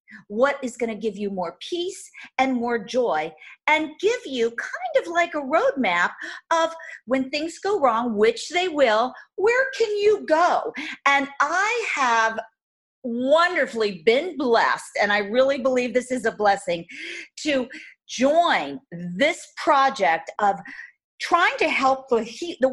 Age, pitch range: 50-69, 215-330 Hz